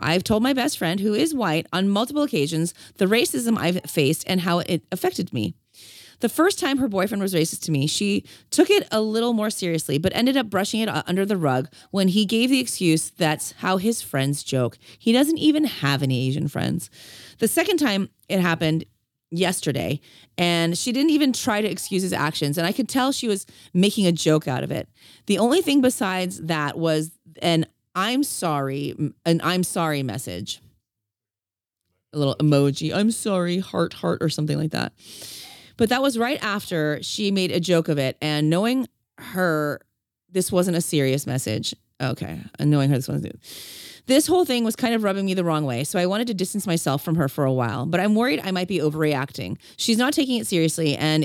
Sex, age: female, 30-49